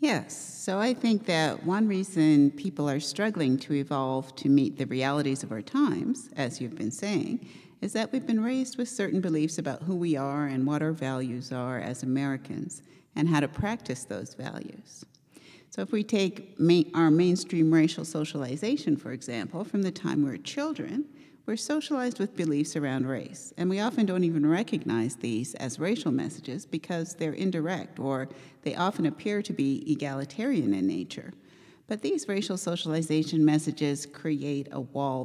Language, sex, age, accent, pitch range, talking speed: English, female, 60-79, American, 135-190 Hz, 170 wpm